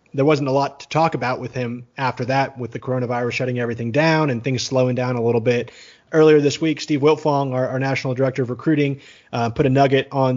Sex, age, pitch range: male, 30-49, 120-145 Hz